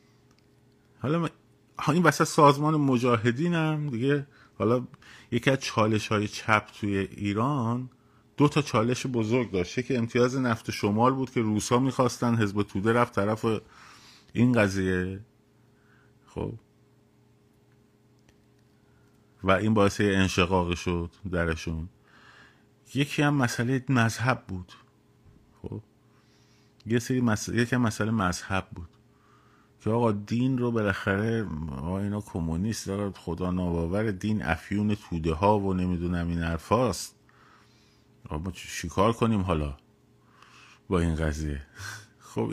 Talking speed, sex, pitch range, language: 110 wpm, male, 90-120 Hz, Persian